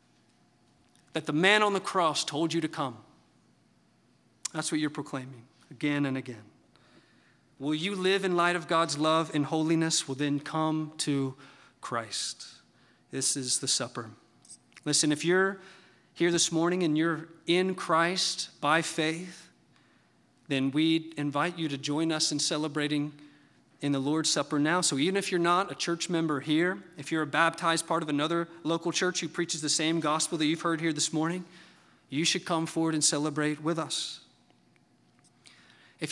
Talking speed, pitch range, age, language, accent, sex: 165 wpm, 150-180 Hz, 40-59, English, American, male